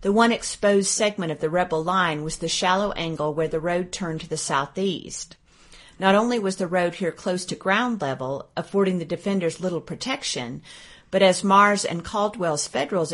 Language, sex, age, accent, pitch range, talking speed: English, female, 40-59, American, 165-200 Hz, 185 wpm